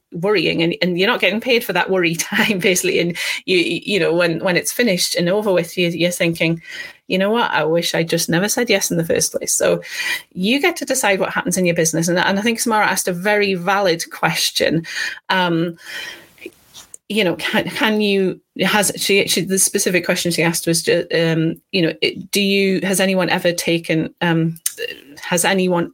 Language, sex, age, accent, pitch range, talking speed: English, female, 30-49, British, 175-215 Hz, 205 wpm